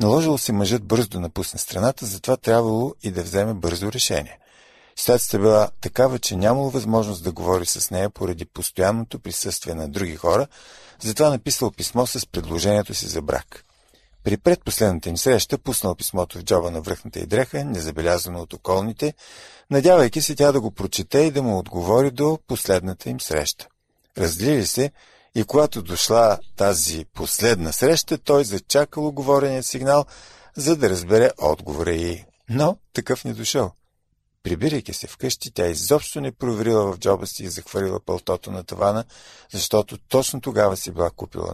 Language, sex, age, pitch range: Bulgarian, male, 50-69, 90-130 Hz